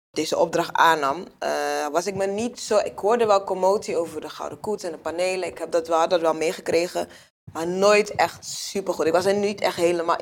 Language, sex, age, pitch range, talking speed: Dutch, female, 20-39, 160-190 Hz, 215 wpm